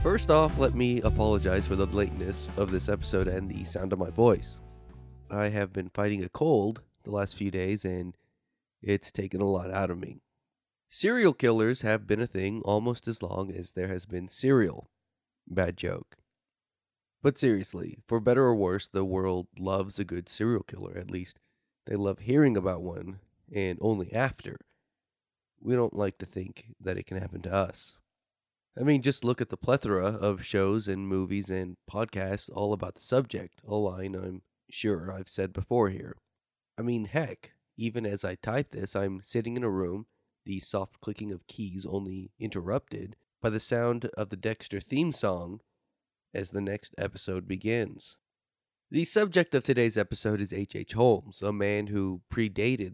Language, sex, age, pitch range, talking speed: English, male, 30-49, 95-115 Hz, 175 wpm